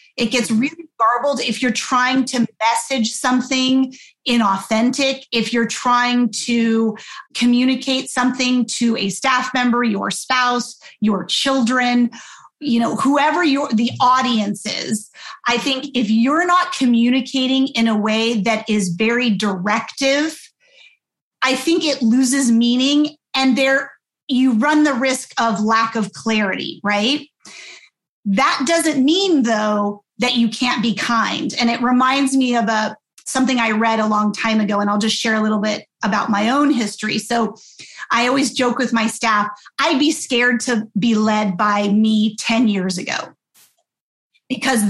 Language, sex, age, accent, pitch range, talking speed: English, female, 30-49, American, 220-265 Hz, 150 wpm